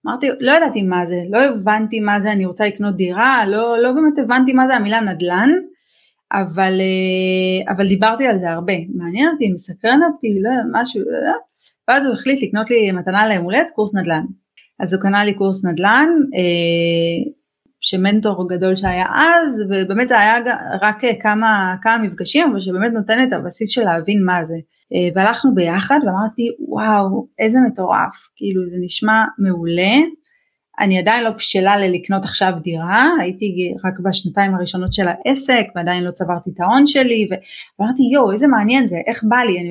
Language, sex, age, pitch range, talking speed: Hebrew, female, 30-49, 185-240 Hz, 165 wpm